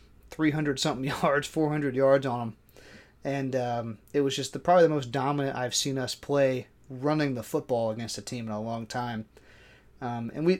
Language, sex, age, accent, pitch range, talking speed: English, male, 30-49, American, 125-160 Hz, 185 wpm